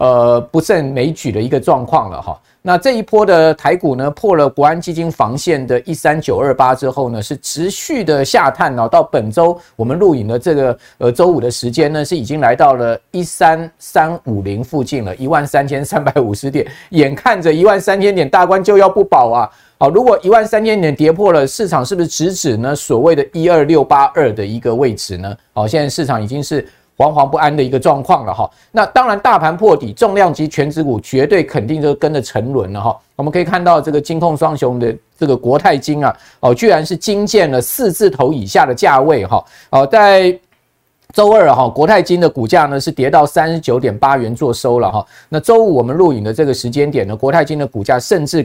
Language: Chinese